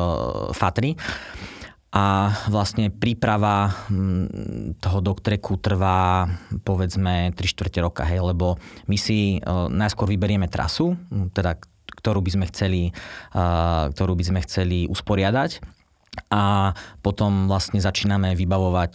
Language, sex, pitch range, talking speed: Slovak, male, 85-100 Hz, 105 wpm